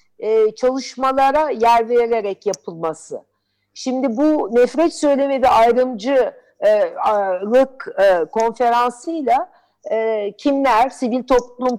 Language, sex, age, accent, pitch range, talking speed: Turkish, female, 50-69, native, 205-270 Hz, 70 wpm